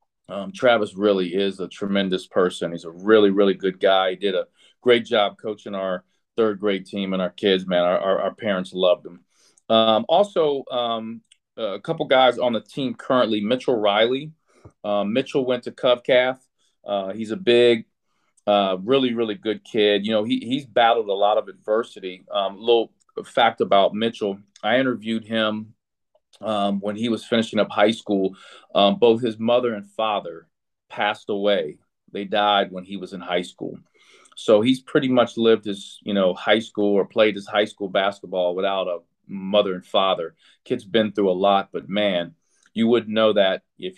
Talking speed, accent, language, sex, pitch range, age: 185 wpm, American, English, male, 100-120 Hz, 40-59